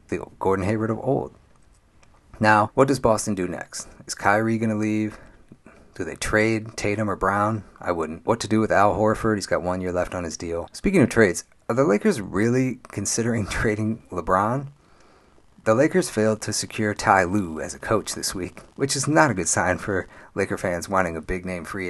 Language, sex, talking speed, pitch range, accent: English, male, 205 wpm, 95-115 Hz, American